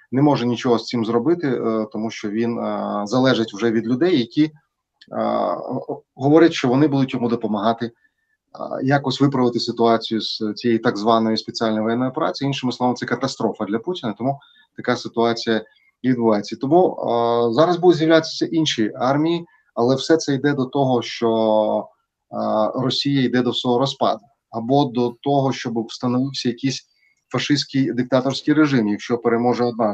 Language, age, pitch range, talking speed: Ukrainian, 20-39, 115-140 Hz, 150 wpm